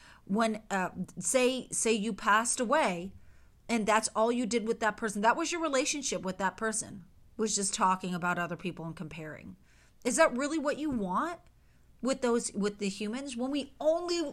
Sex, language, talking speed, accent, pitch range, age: female, English, 185 wpm, American, 185-270 Hz, 30-49